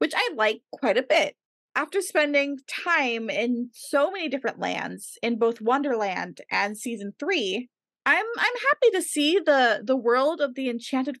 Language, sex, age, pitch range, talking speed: English, female, 20-39, 210-285 Hz, 165 wpm